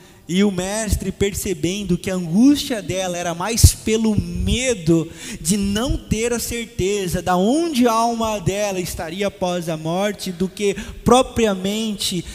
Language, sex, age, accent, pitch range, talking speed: Portuguese, male, 20-39, Brazilian, 150-190 Hz, 140 wpm